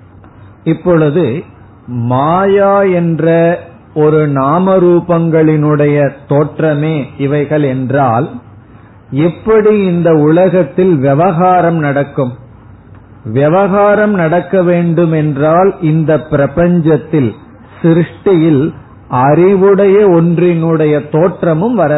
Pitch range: 125-170 Hz